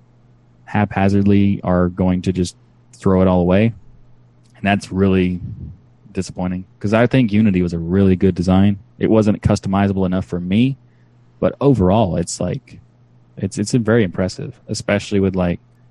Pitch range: 90-115 Hz